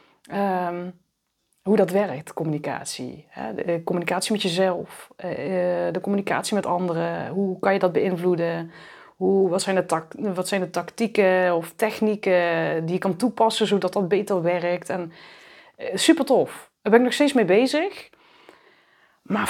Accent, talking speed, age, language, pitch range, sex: Dutch, 145 wpm, 30-49, Dutch, 175-220 Hz, female